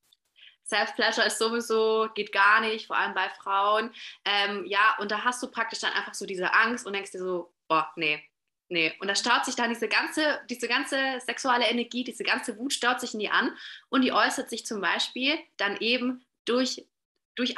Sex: female